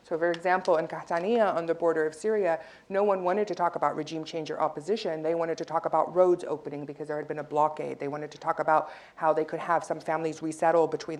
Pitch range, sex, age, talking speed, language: 150-175 Hz, female, 40-59, 245 wpm, English